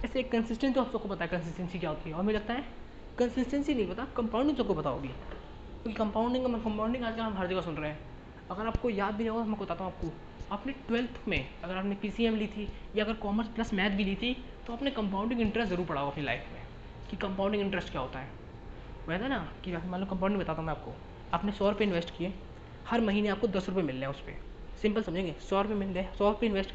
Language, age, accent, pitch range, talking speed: Hindi, 20-39, native, 170-225 Hz, 240 wpm